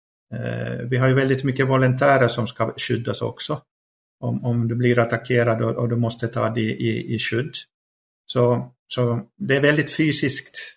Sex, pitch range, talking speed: male, 115-130 Hz, 165 wpm